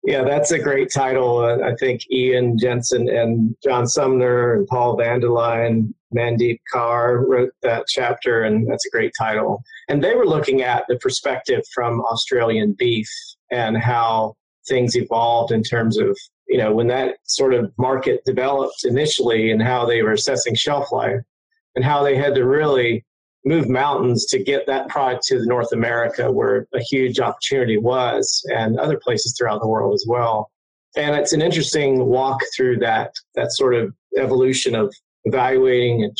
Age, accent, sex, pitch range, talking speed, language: 40-59, American, male, 120-145 Hz, 170 wpm, English